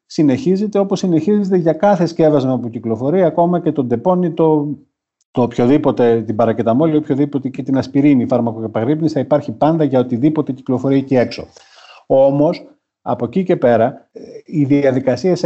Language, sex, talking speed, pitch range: Greek, male, 145 wpm, 115-145 Hz